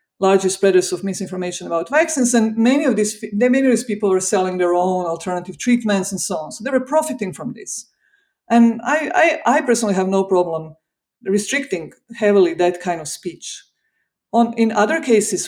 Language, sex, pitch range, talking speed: English, female, 185-230 Hz, 180 wpm